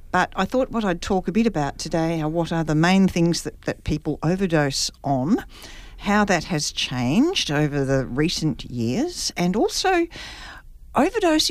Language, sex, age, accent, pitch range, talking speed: English, female, 50-69, Australian, 145-185 Hz, 165 wpm